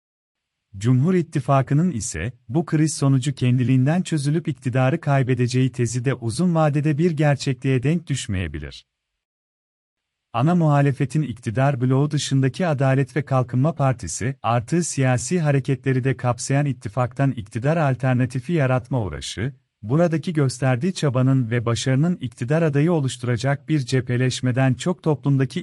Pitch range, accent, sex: 125-155 Hz, native, male